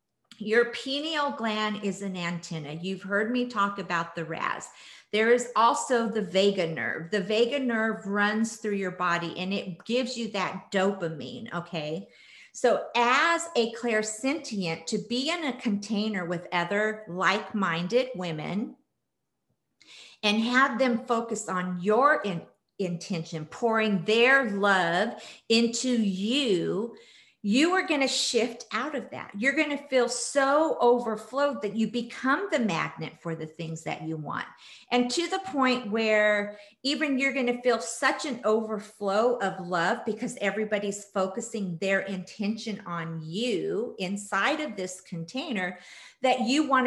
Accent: American